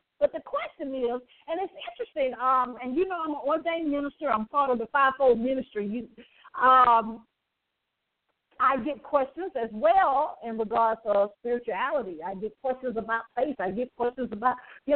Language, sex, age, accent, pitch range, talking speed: English, female, 50-69, American, 225-315 Hz, 175 wpm